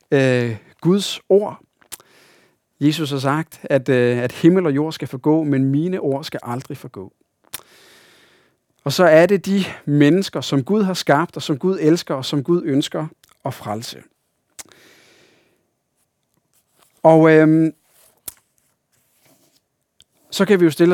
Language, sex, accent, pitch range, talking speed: Danish, male, native, 135-165 Hz, 130 wpm